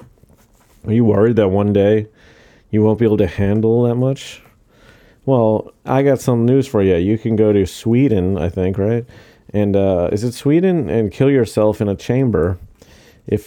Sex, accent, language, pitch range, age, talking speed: male, American, English, 100-125 Hz, 30-49, 185 wpm